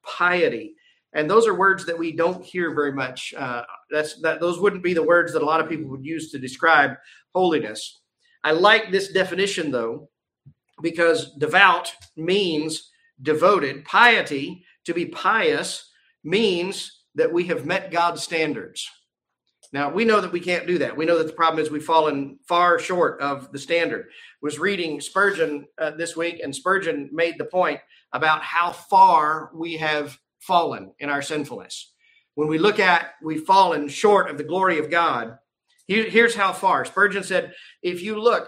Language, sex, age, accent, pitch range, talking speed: English, male, 50-69, American, 155-190 Hz, 175 wpm